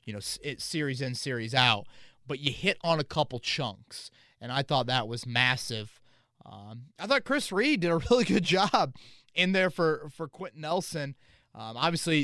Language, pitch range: English, 115-145 Hz